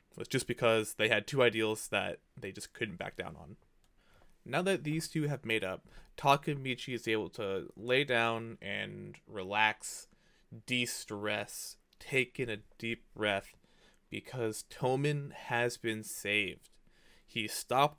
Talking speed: 140 wpm